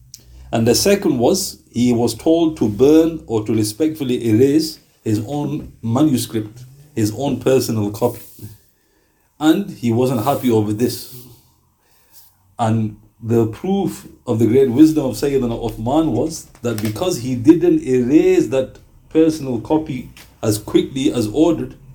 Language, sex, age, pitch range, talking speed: English, male, 50-69, 115-150 Hz, 135 wpm